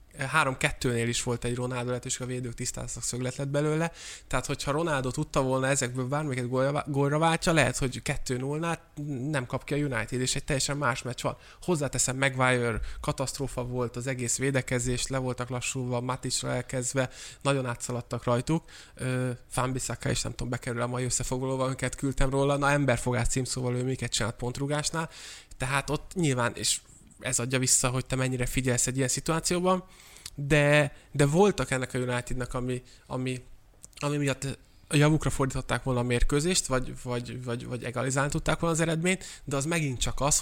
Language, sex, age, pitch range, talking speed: Hungarian, male, 20-39, 125-145 Hz, 165 wpm